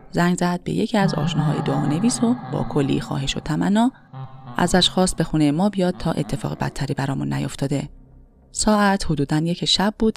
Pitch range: 140-195 Hz